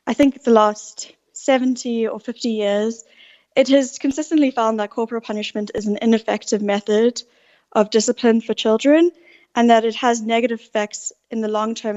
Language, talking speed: English, 165 wpm